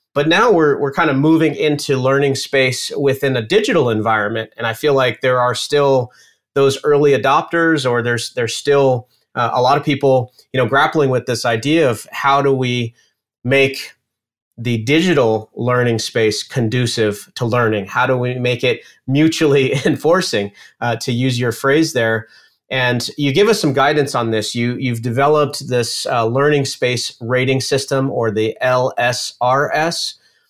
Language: English